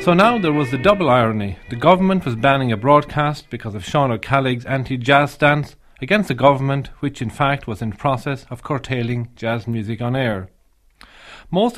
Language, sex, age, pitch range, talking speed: English, male, 40-59, 115-145 Hz, 180 wpm